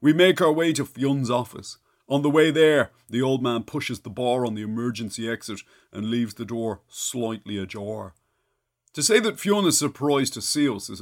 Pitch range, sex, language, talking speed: 105-145 Hz, male, English, 200 wpm